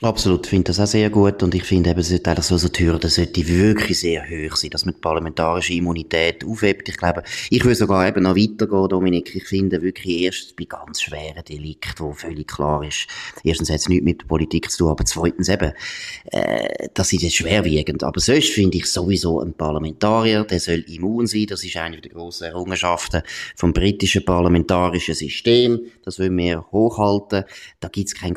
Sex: male